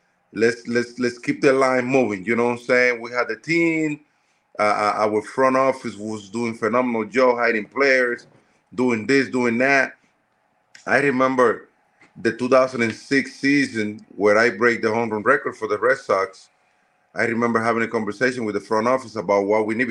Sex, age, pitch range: male, 30-49, 110-130 Hz